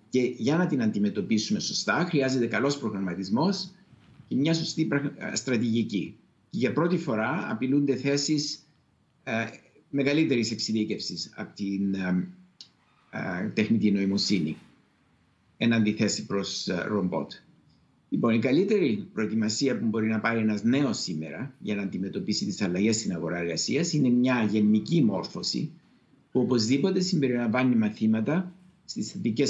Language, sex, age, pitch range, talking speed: Greek, male, 60-79, 105-145 Hz, 125 wpm